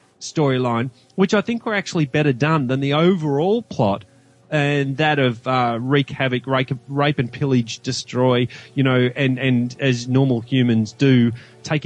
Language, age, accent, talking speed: English, 30-49, Australian, 160 wpm